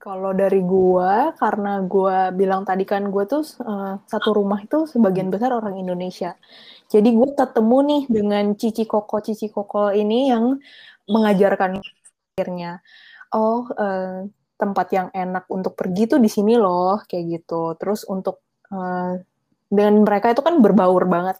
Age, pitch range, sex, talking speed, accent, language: 20-39, 185-220 Hz, female, 150 wpm, native, Indonesian